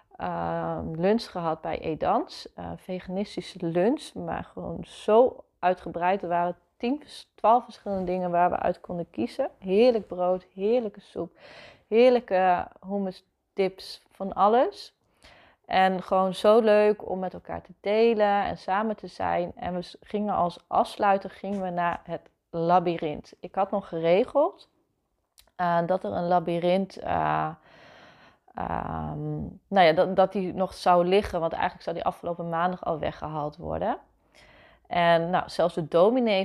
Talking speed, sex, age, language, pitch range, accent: 145 wpm, female, 30-49, Dutch, 170-205 Hz, Dutch